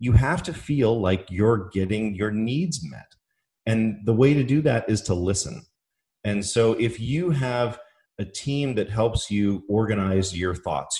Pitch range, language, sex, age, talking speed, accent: 100-130 Hz, English, male, 30-49, 175 wpm, American